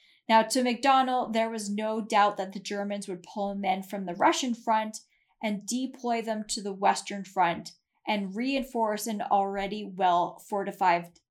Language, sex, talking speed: English, female, 160 wpm